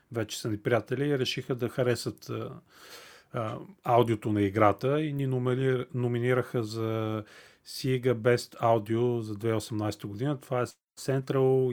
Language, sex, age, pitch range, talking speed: Bulgarian, male, 30-49, 110-135 Hz, 135 wpm